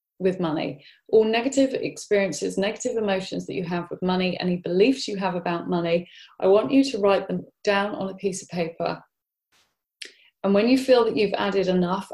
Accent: British